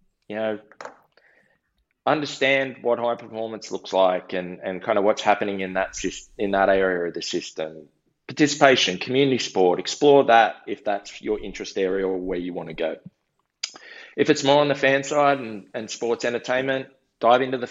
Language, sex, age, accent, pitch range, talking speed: English, male, 20-39, Australian, 95-135 Hz, 175 wpm